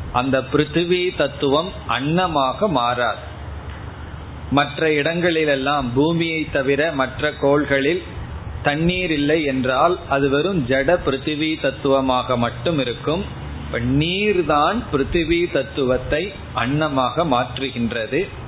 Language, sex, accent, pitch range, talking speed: Tamil, male, native, 125-155 Hz, 80 wpm